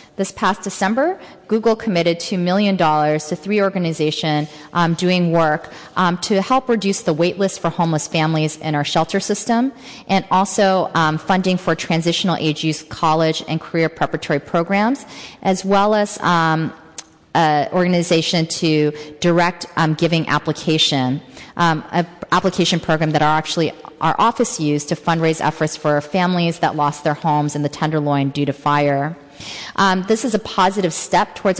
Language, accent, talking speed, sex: English, American, 150 wpm, female